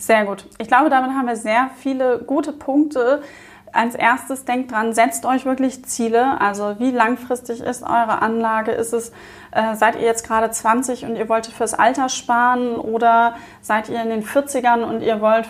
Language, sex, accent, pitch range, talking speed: German, female, German, 225-260 Hz, 185 wpm